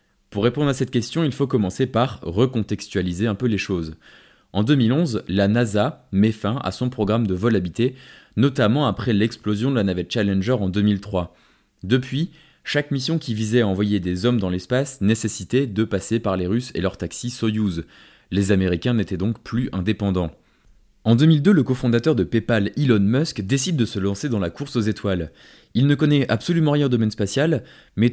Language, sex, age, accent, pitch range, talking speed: French, male, 20-39, French, 100-125 Hz, 190 wpm